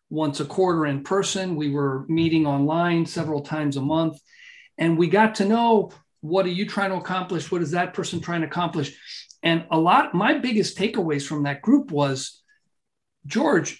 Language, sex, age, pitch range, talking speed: English, male, 40-59, 165-215 Hz, 185 wpm